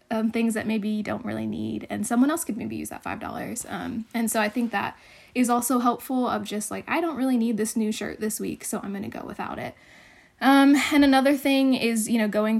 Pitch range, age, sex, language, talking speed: 215-250 Hz, 10-29, female, English, 250 wpm